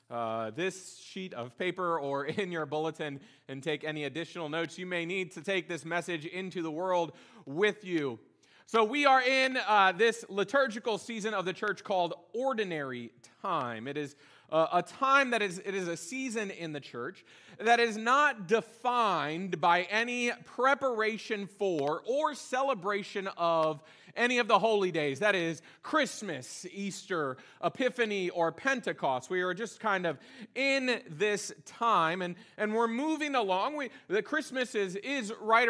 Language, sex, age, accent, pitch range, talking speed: English, male, 30-49, American, 170-240 Hz, 160 wpm